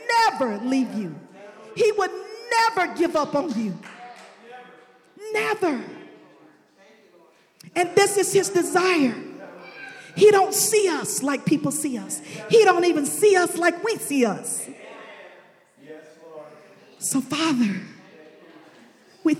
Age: 40-59